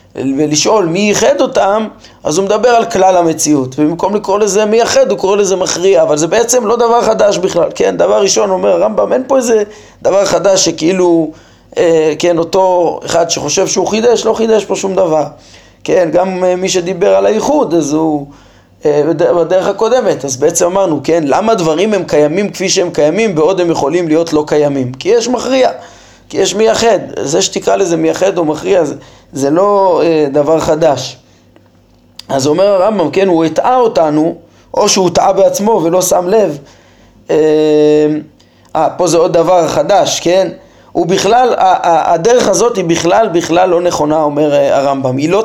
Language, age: Hebrew, 20-39